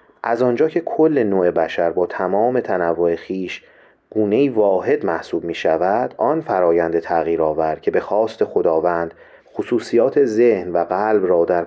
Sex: male